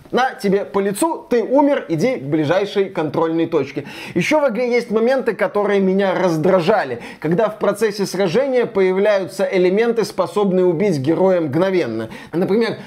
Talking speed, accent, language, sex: 140 wpm, native, Russian, male